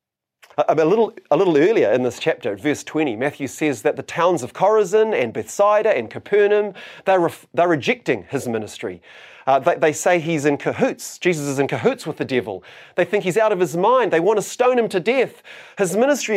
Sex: male